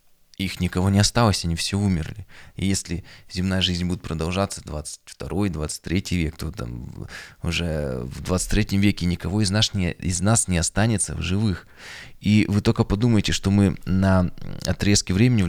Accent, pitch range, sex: native, 85-100 Hz, male